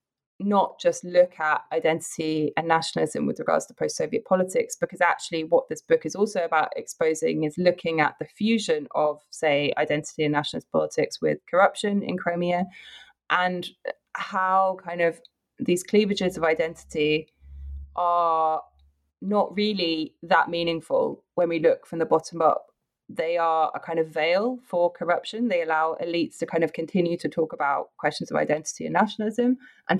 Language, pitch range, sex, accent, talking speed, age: English, 155-190 Hz, female, British, 160 wpm, 20-39